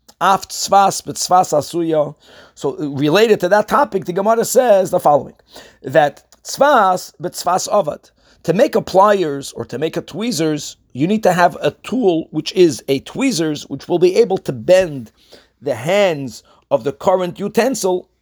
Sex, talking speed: male, 140 wpm